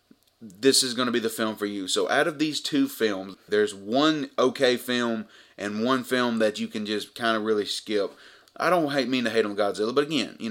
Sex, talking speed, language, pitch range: male, 235 wpm, English, 110-125 Hz